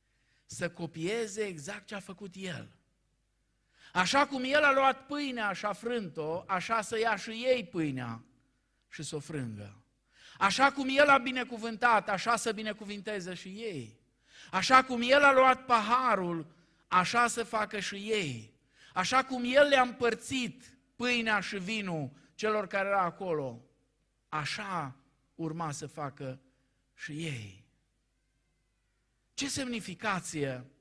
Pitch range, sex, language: 145-235 Hz, male, Romanian